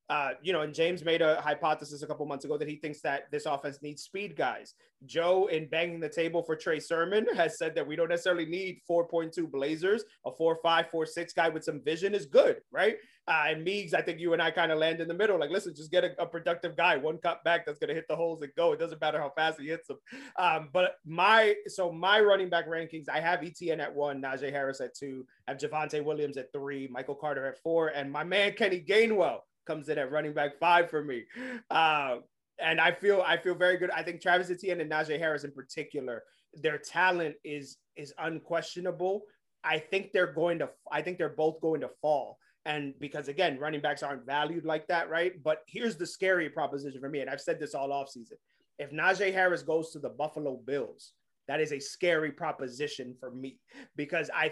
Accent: American